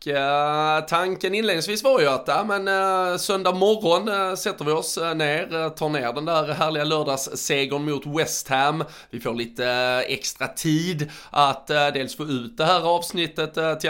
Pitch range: 130-160 Hz